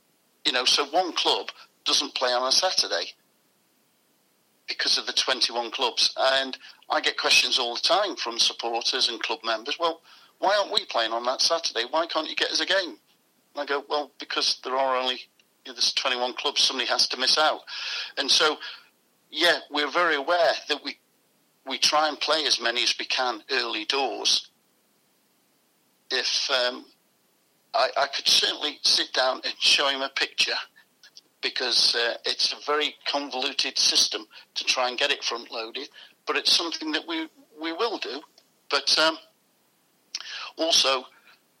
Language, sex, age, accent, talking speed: English, male, 50-69, British, 165 wpm